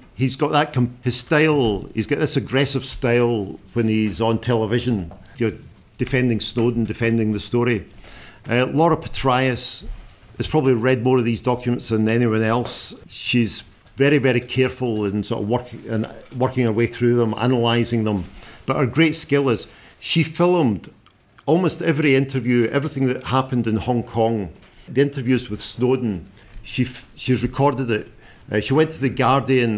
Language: English